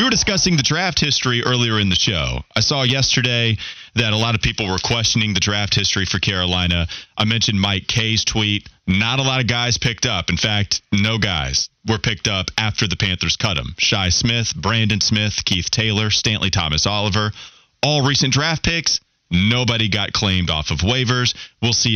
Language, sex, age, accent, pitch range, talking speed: English, male, 30-49, American, 100-135 Hz, 190 wpm